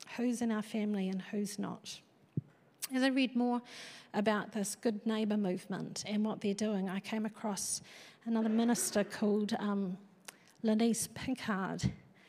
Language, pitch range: English, 200-235 Hz